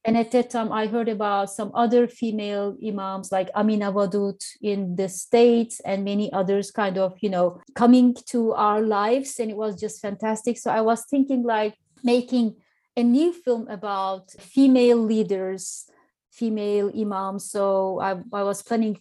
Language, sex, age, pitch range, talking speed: English, female, 30-49, 195-230 Hz, 165 wpm